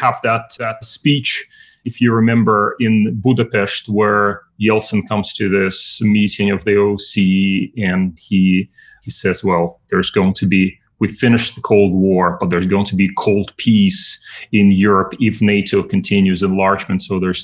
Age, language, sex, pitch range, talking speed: 30-49, English, male, 110-145 Hz, 160 wpm